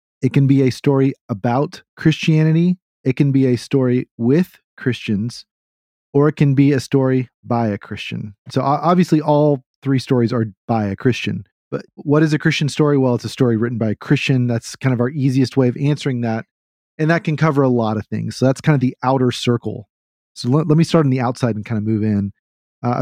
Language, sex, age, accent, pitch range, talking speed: English, male, 40-59, American, 120-150 Hz, 215 wpm